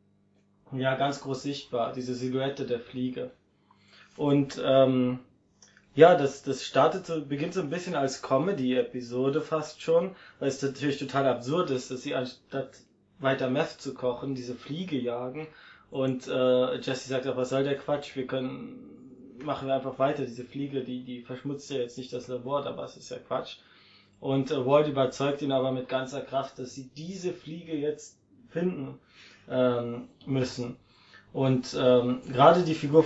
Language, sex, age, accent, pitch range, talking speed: German, male, 20-39, German, 125-145 Hz, 165 wpm